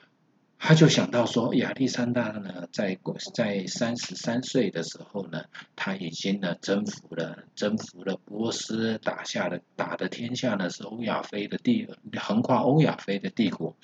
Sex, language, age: male, Chinese, 50-69